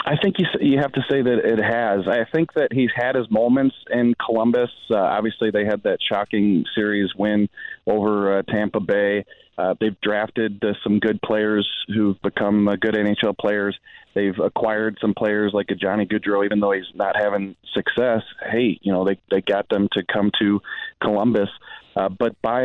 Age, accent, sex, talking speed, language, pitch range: 30-49, American, male, 190 wpm, English, 100-115 Hz